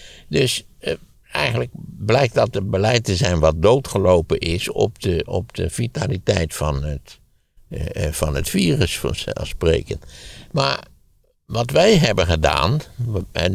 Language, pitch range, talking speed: Dutch, 75-100 Hz, 135 wpm